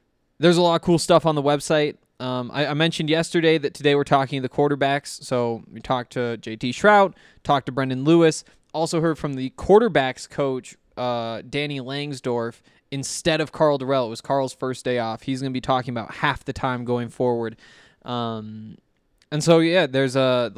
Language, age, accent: English, 20-39, American